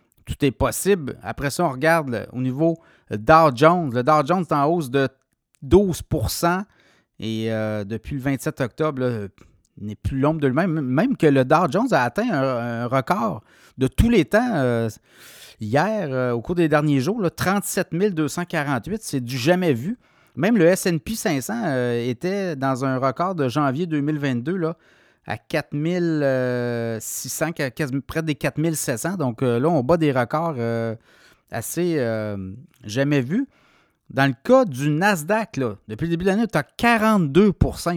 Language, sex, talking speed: French, male, 160 wpm